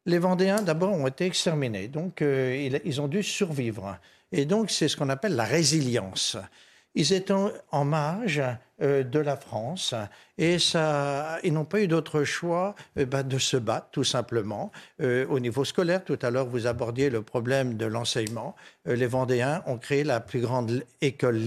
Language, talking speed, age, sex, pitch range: French, 175 wpm, 60-79, male, 125-170 Hz